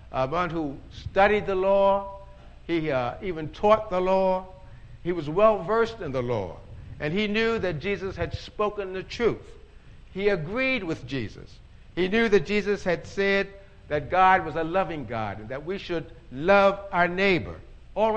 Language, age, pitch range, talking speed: English, 60-79, 140-205 Hz, 170 wpm